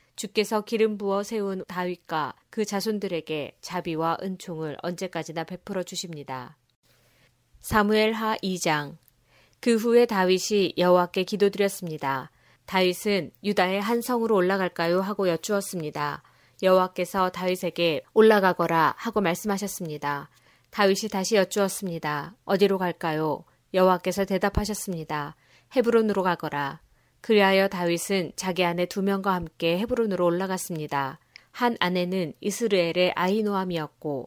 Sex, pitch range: female, 165-205 Hz